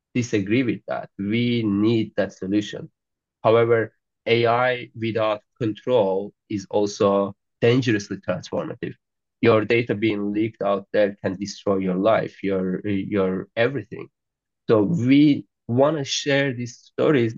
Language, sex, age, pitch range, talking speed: English, male, 30-49, 100-115 Hz, 115 wpm